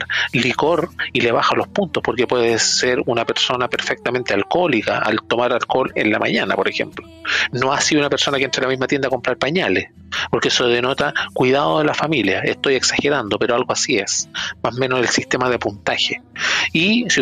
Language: Spanish